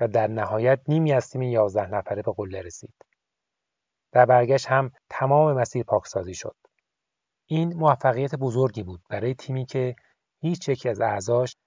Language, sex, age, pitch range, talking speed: Persian, male, 30-49, 110-135 Hz, 150 wpm